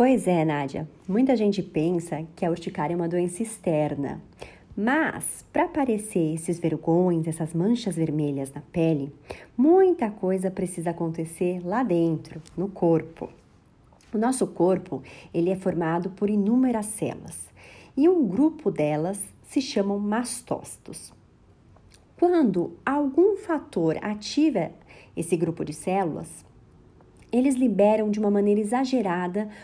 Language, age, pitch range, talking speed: Portuguese, 40-59, 170-245 Hz, 125 wpm